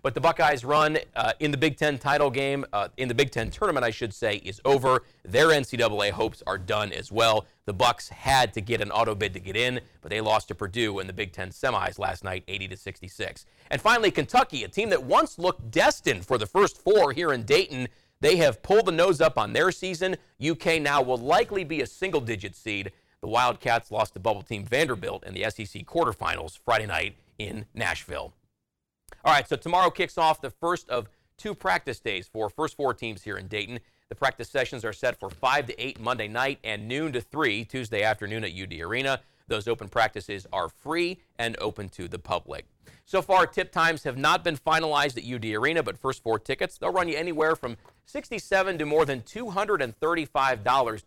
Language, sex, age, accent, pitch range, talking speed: English, male, 40-59, American, 105-150 Hz, 205 wpm